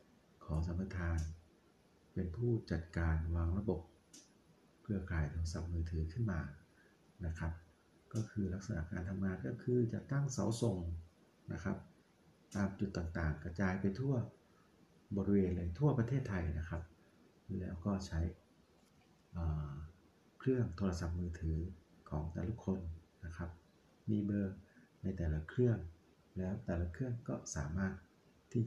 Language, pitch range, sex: Thai, 80-100 Hz, male